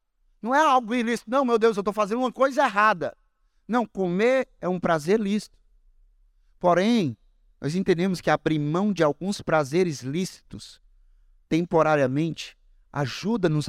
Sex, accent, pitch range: male, Brazilian, 160-230 Hz